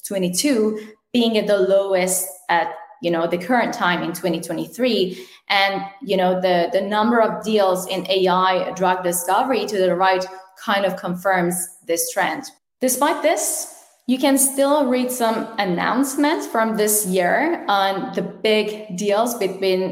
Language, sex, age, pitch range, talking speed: English, female, 10-29, 185-230 Hz, 150 wpm